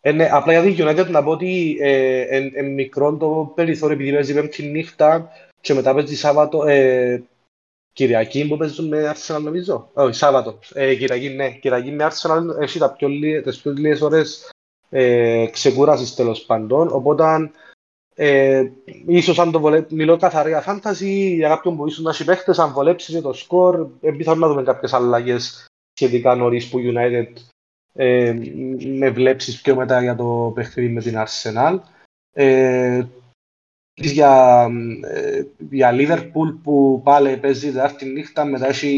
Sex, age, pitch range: male, 30-49, 130-160 Hz